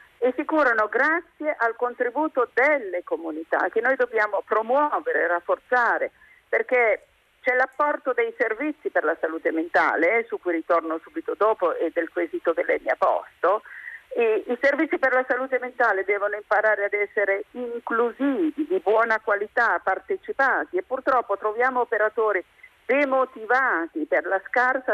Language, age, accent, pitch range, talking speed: Italian, 50-69, native, 205-320 Hz, 140 wpm